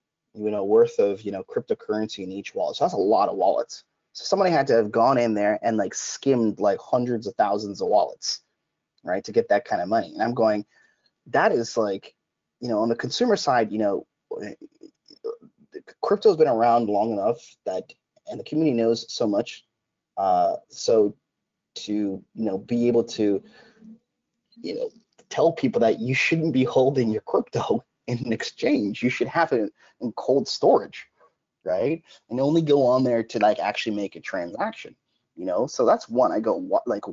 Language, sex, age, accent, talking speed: English, male, 20-39, American, 185 wpm